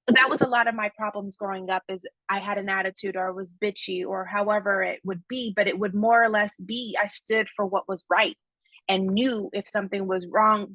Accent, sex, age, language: American, female, 30-49, English